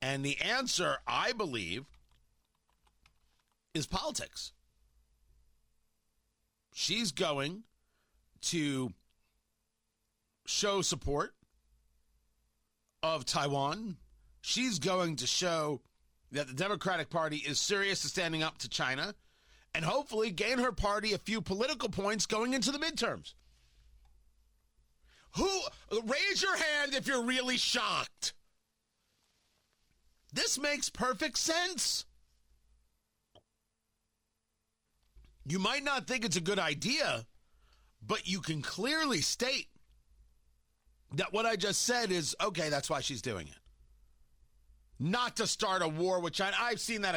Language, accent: English, American